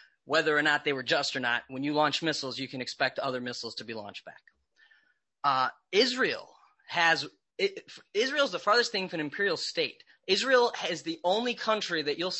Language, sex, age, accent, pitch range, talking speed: English, male, 30-49, American, 150-200 Hz, 195 wpm